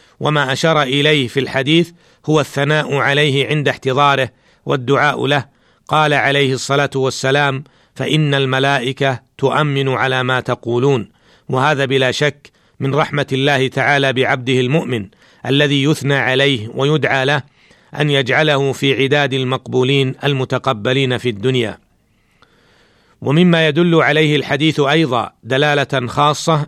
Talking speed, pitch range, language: 115 wpm, 135-150 Hz, Arabic